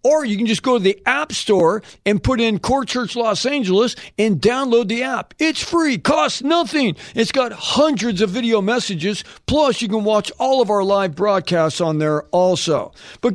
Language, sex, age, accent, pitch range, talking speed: English, male, 50-69, American, 185-245 Hz, 195 wpm